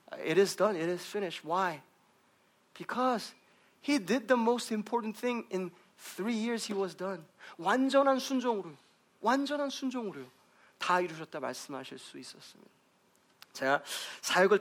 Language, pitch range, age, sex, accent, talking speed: English, 160-215 Hz, 40-59, male, Korean, 125 wpm